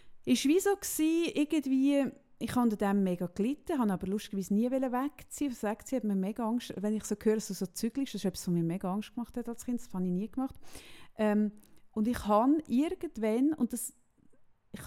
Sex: female